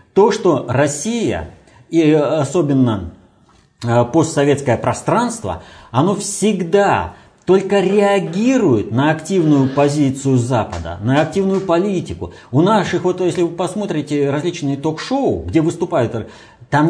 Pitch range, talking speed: 130-185 Hz, 105 wpm